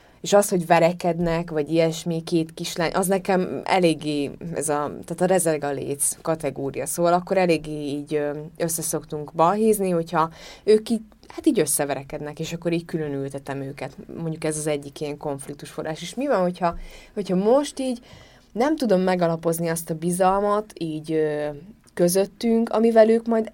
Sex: female